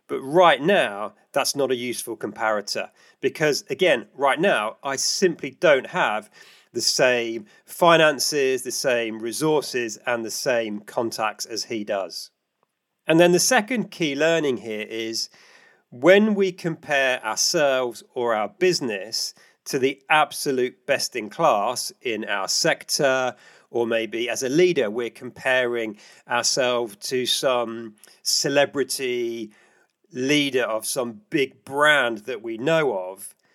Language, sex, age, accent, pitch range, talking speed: English, male, 40-59, British, 120-175 Hz, 130 wpm